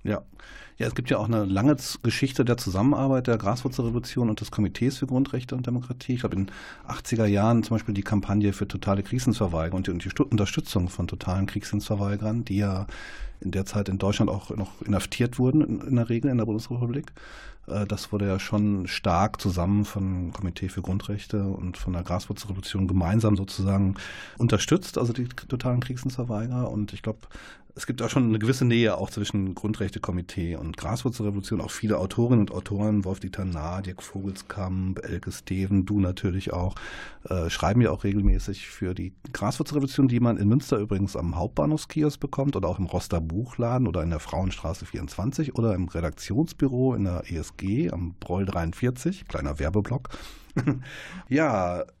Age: 40-59